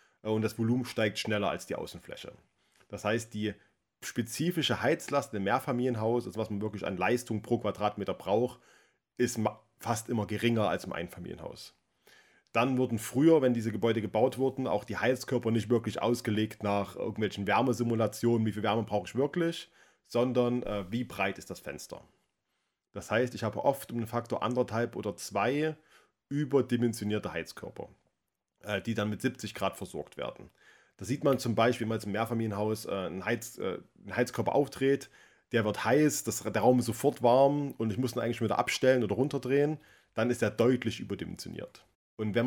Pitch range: 105-125 Hz